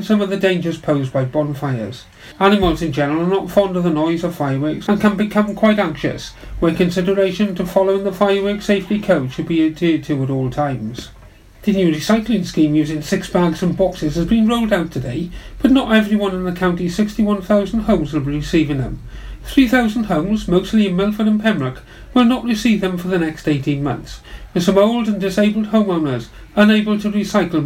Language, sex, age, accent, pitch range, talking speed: English, male, 40-59, British, 155-210 Hz, 195 wpm